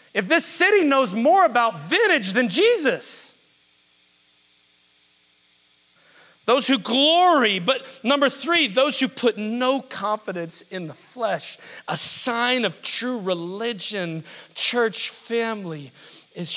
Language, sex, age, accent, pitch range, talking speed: English, male, 40-59, American, 155-235 Hz, 110 wpm